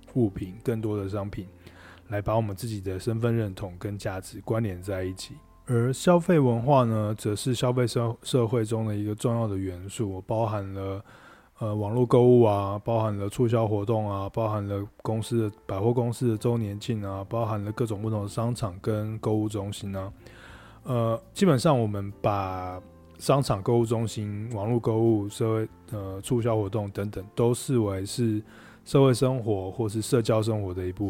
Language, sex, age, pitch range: Chinese, male, 20-39, 100-115 Hz